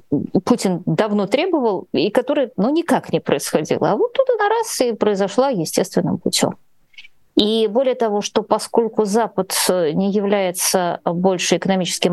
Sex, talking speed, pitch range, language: female, 140 wpm, 165-230 Hz, Russian